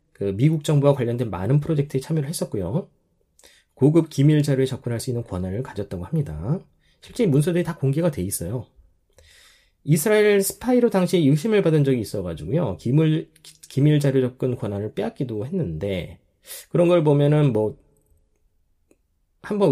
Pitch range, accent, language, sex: 100-160 Hz, native, Korean, male